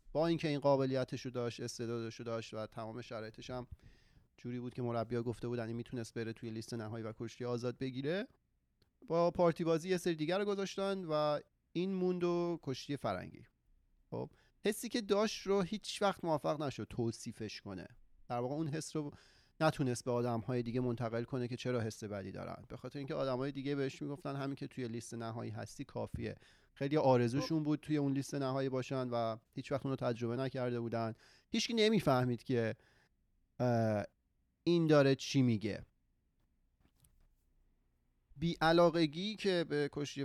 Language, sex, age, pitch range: Persian, male, 30-49, 120-150 Hz